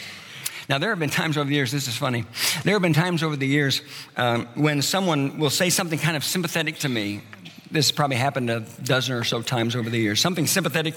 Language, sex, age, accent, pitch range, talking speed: English, male, 50-69, American, 120-150 Hz, 230 wpm